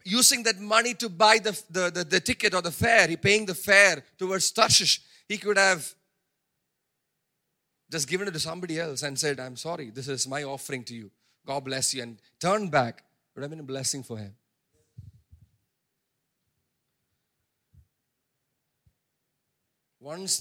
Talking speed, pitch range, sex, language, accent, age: 155 wpm, 125-190 Hz, male, English, Indian, 40-59